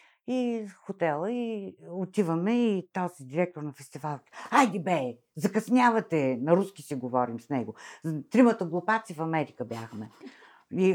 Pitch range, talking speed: 150-220 Hz, 130 wpm